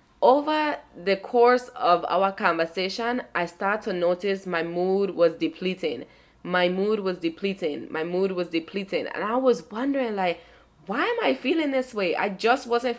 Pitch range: 180-225 Hz